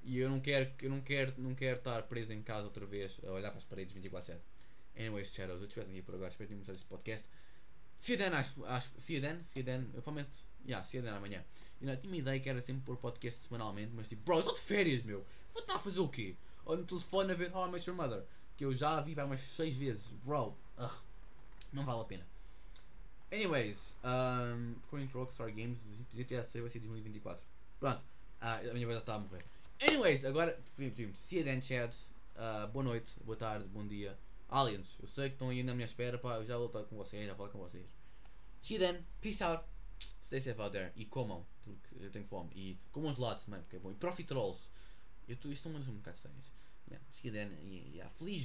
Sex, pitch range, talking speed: male, 100-135 Hz, 235 wpm